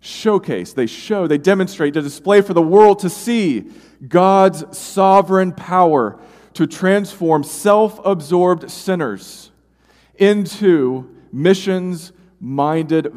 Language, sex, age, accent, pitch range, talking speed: English, male, 40-59, American, 110-170 Hz, 105 wpm